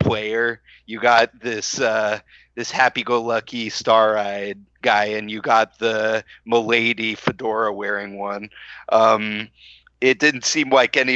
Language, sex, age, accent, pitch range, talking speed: English, male, 30-49, American, 100-120 Hz, 125 wpm